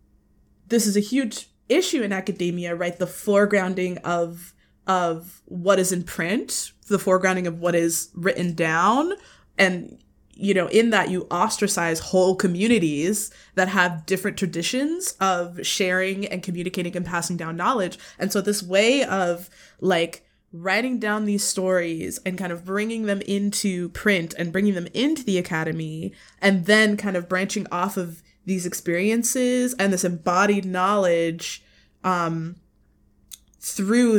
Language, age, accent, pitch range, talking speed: English, 20-39, American, 175-205 Hz, 145 wpm